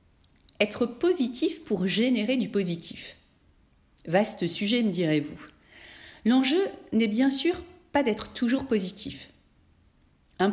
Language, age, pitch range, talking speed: French, 40-59, 155-255 Hz, 110 wpm